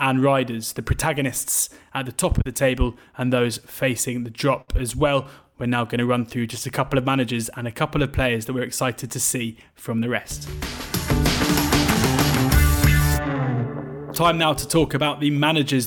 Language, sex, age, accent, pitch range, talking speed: English, male, 20-39, British, 125-140 Hz, 180 wpm